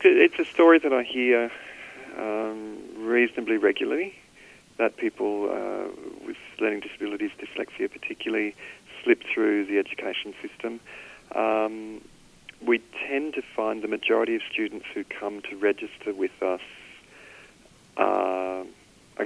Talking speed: 120 wpm